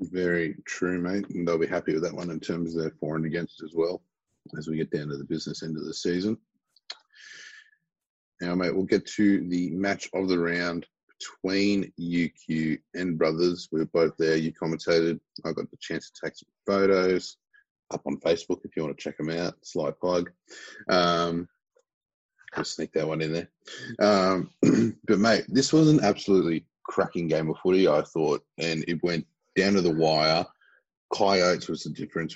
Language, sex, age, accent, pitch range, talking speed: English, male, 30-49, Australian, 80-90 Hz, 185 wpm